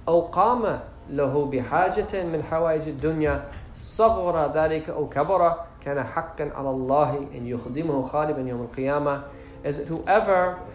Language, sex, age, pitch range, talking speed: English, male, 40-59, 145-190 Hz, 85 wpm